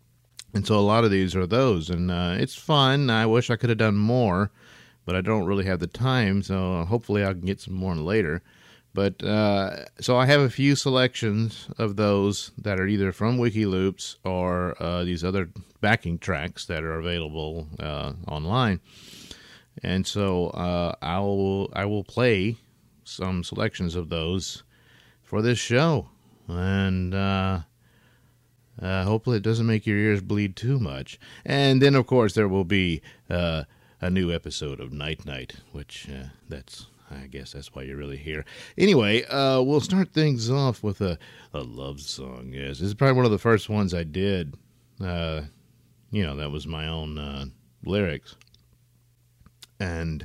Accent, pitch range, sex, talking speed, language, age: American, 90-115 Hz, male, 170 wpm, English, 50-69